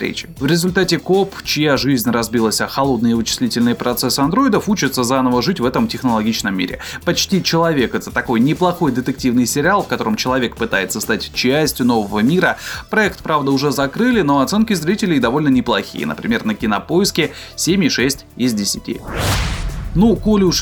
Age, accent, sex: 20-39, native, male